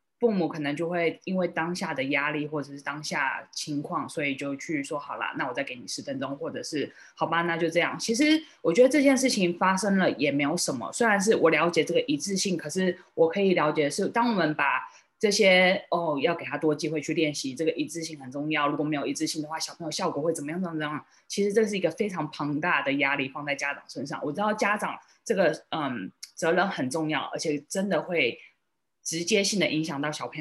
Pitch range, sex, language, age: 150-185 Hz, female, Chinese, 20-39